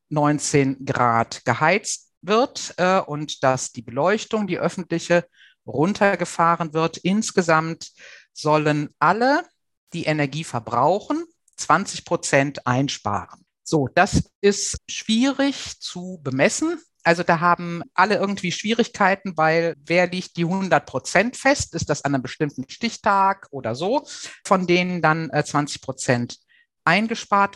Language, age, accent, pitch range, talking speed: German, 50-69, German, 145-195 Hz, 120 wpm